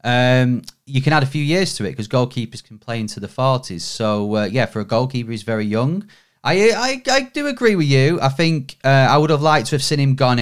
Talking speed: 255 wpm